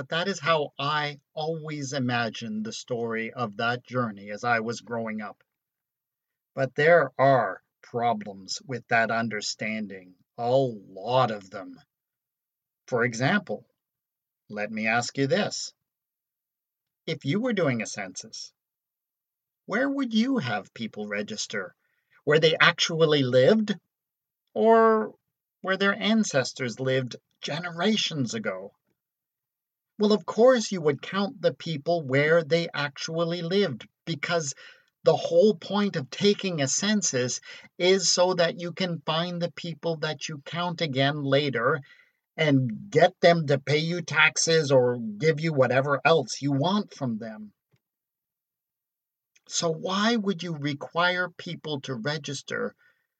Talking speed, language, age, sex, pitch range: 130 wpm, English, 50-69, male, 130-180 Hz